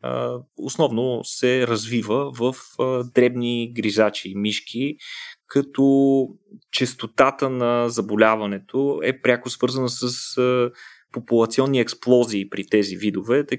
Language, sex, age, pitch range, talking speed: Bulgarian, male, 20-39, 105-125 Hz, 95 wpm